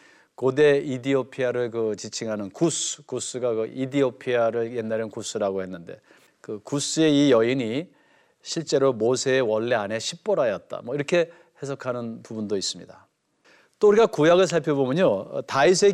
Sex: male